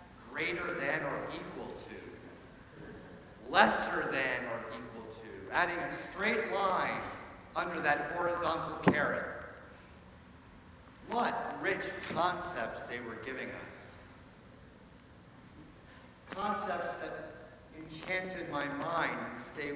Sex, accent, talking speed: male, American, 95 wpm